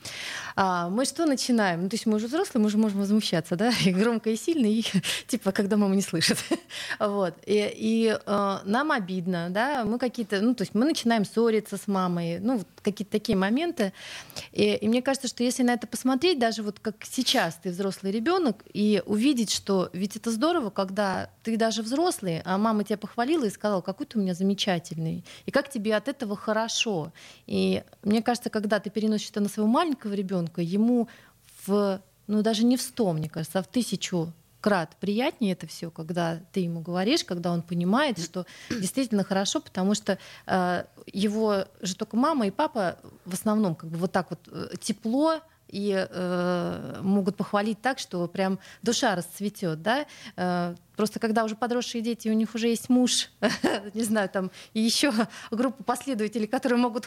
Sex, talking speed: female, 180 wpm